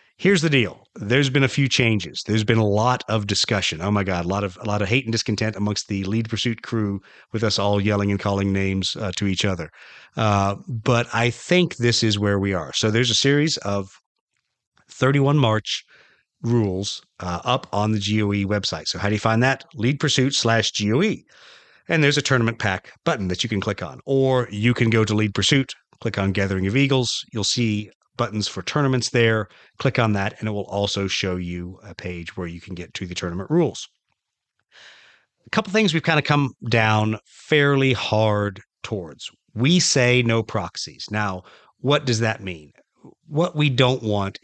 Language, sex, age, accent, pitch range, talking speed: English, male, 40-59, American, 100-125 Hz, 200 wpm